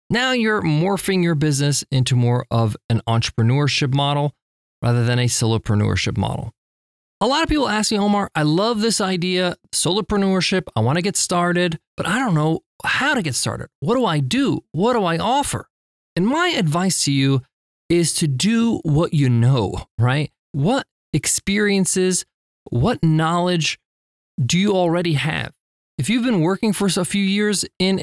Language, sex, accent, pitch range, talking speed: English, male, American, 140-205 Hz, 165 wpm